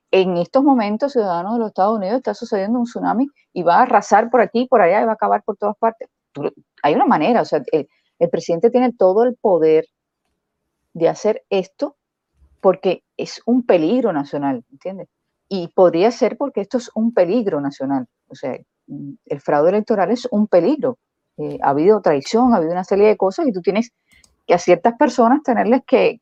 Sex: female